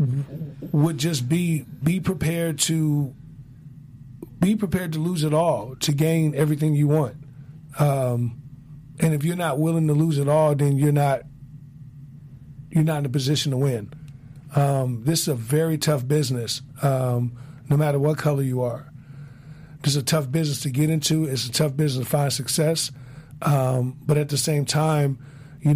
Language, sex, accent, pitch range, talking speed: English, male, American, 135-150 Hz, 170 wpm